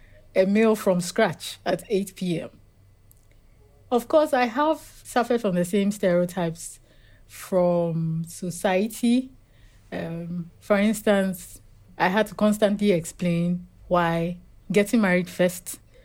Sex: female